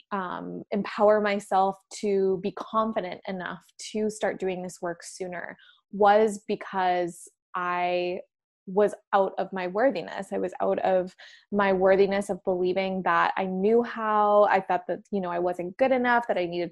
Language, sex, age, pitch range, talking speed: English, female, 20-39, 190-215 Hz, 160 wpm